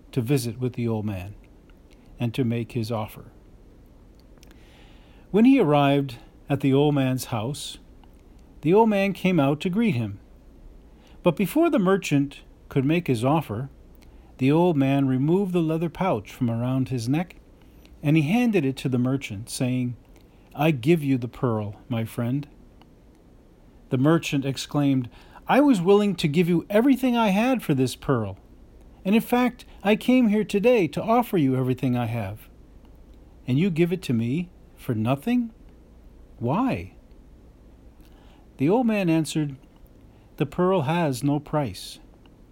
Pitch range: 115-175 Hz